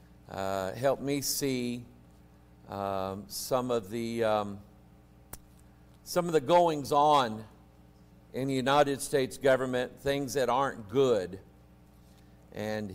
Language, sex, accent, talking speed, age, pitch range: English, male, American, 110 wpm, 50-69, 100-140 Hz